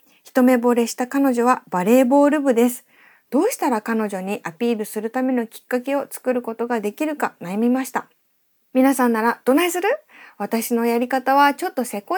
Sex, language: female, Japanese